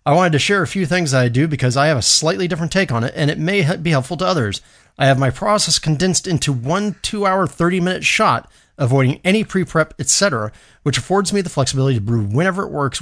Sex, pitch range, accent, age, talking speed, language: male, 120-165 Hz, American, 30-49, 230 wpm, English